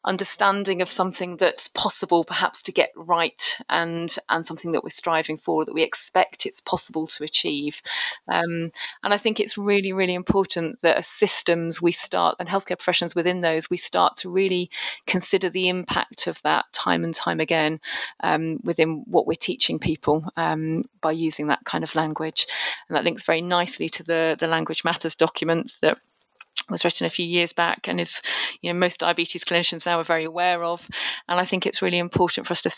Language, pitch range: English, 160-185 Hz